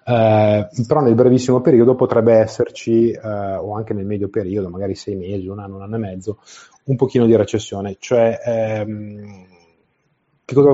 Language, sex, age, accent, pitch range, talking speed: Italian, male, 30-49, native, 100-115 Hz, 170 wpm